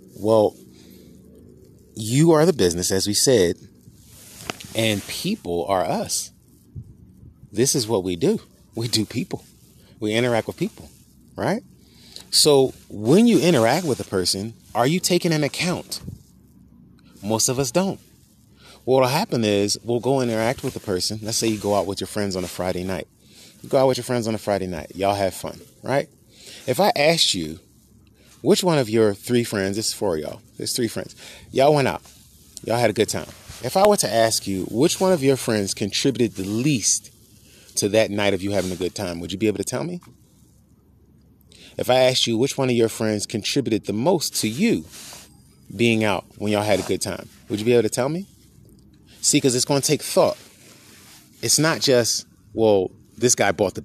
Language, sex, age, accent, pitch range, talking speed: English, male, 30-49, American, 100-125 Hz, 200 wpm